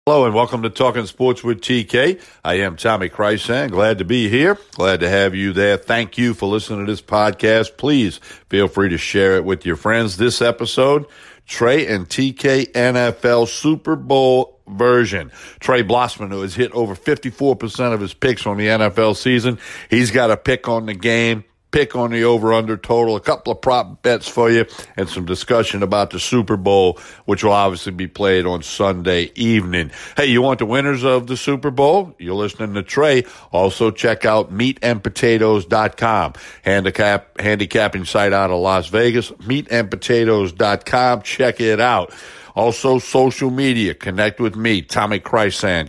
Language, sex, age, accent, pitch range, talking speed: English, male, 60-79, American, 100-120 Hz, 170 wpm